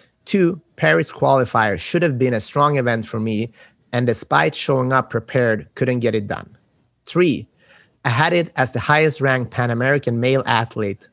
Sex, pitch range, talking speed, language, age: male, 115-140 Hz, 165 wpm, English, 30-49